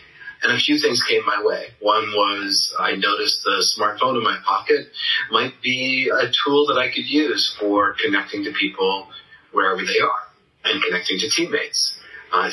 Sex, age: male, 40-59